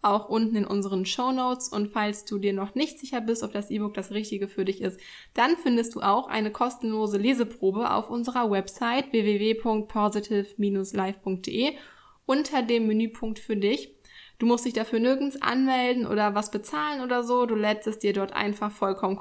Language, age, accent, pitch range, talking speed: German, 10-29, German, 205-245 Hz, 175 wpm